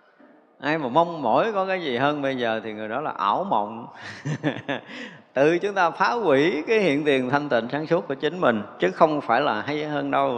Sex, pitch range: male, 115-160 Hz